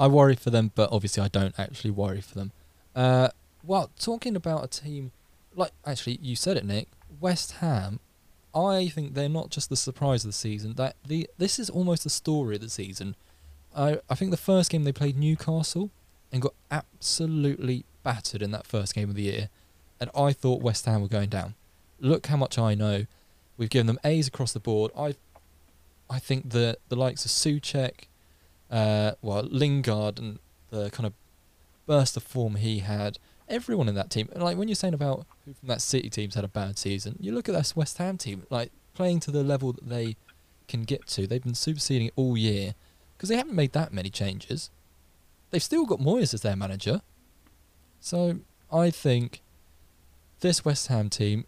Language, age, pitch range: English, 20-39, 100-145 Hz